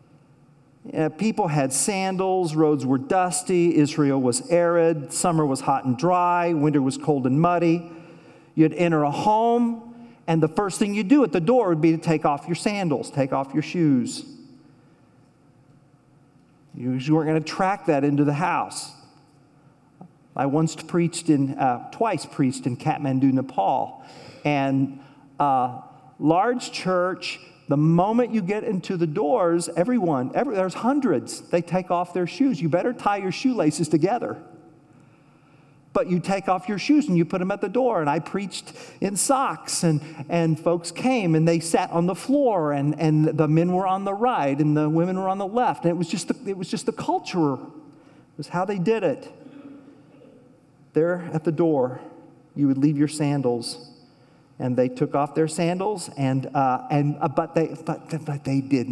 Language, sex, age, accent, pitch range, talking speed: English, male, 50-69, American, 145-190 Hz, 175 wpm